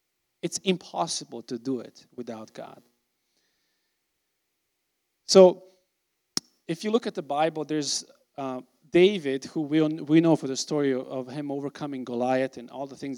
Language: English